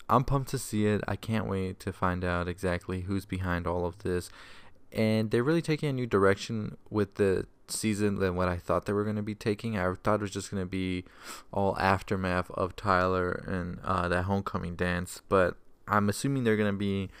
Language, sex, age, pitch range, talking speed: English, male, 20-39, 95-110 Hz, 215 wpm